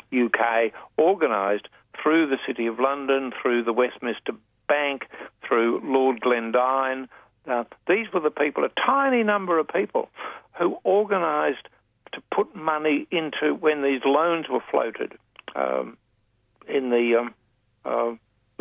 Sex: male